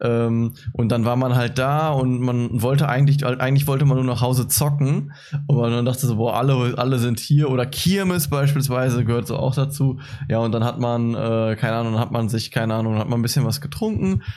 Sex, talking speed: male, 220 wpm